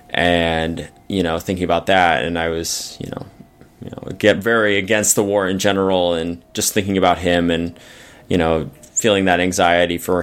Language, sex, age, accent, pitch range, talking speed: English, male, 20-39, American, 90-100 Hz, 180 wpm